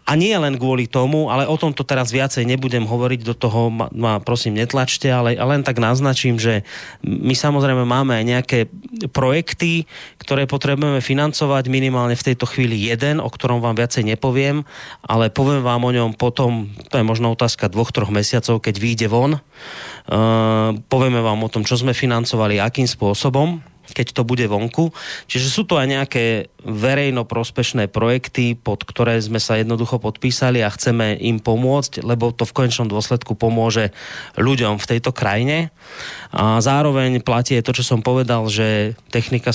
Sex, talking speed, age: male, 165 wpm, 30-49